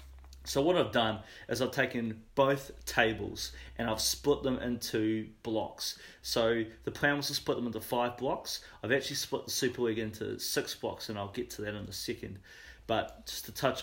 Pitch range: 110-130 Hz